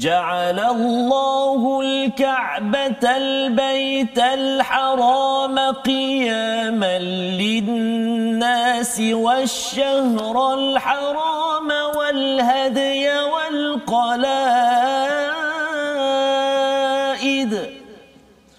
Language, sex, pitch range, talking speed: Malayalam, male, 235-275 Hz, 35 wpm